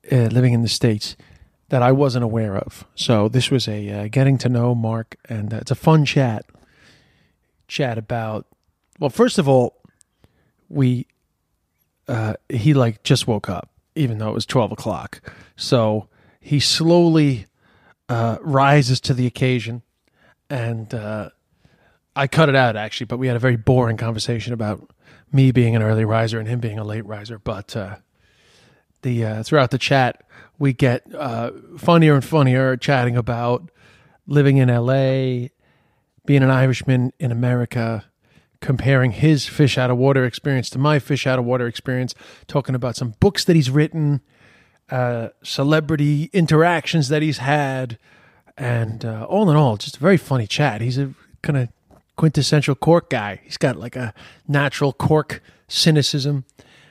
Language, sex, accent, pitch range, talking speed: English, male, American, 115-140 Hz, 160 wpm